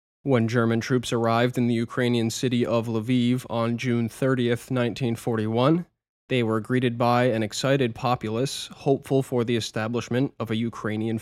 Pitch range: 110-125 Hz